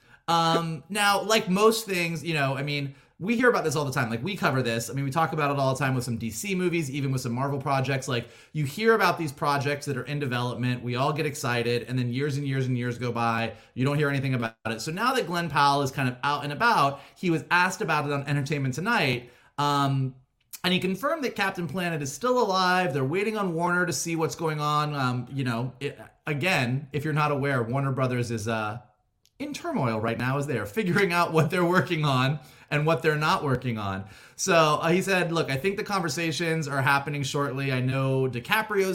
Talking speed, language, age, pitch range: 235 wpm, English, 30-49, 130-175 Hz